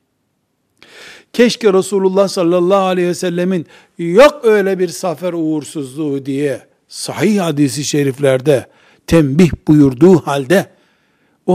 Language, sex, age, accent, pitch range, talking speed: Turkish, male, 60-79, native, 140-185 Hz, 100 wpm